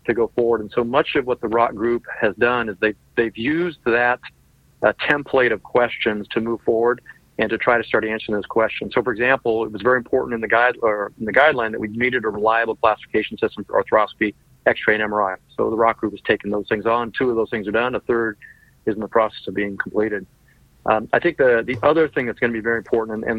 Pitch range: 110-125 Hz